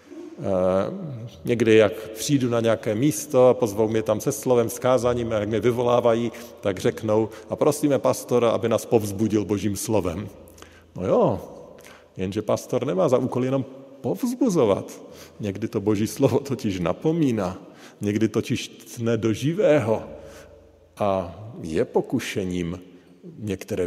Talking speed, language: 130 wpm, Slovak